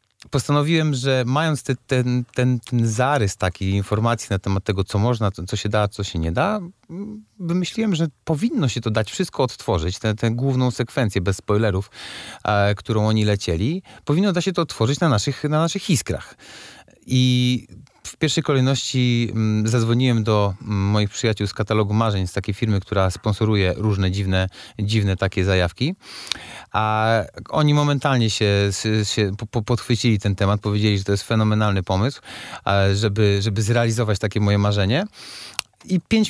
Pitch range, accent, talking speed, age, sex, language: 105-130 Hz, native, 155 wpm, 30-49, male, Polish